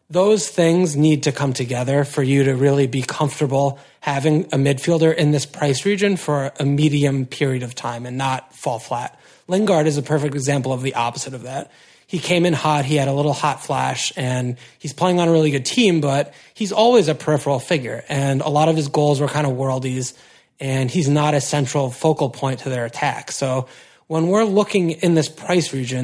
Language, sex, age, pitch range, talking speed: English, male, 30-49, 135-160 Hz, 210 wpm